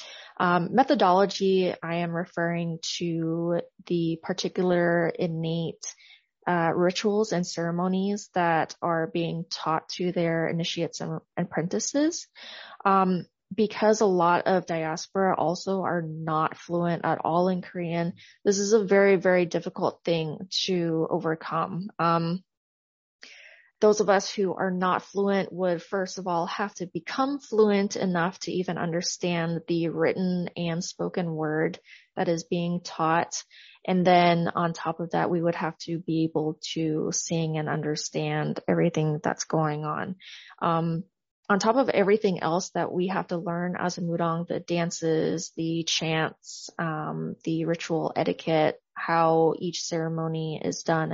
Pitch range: 165-185 Hz